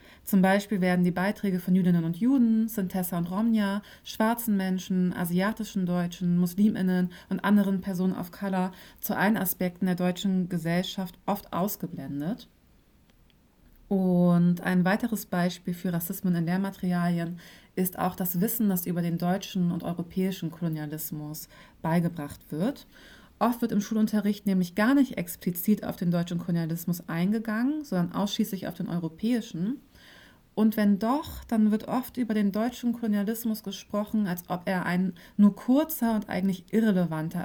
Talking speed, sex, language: 145 wpm, female, German